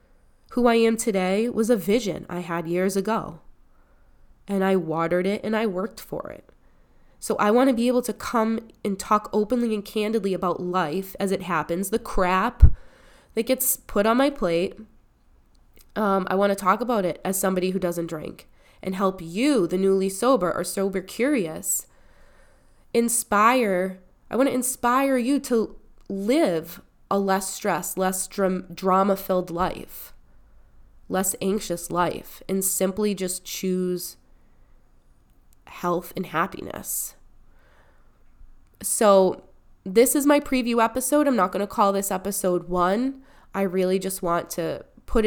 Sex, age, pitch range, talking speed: female, 20-39, 180-225 Hz, 150 wpm